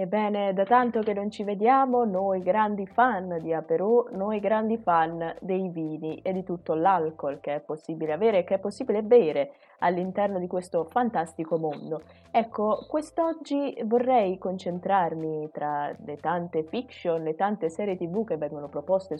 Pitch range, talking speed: 160-215 Hz, 155 wpm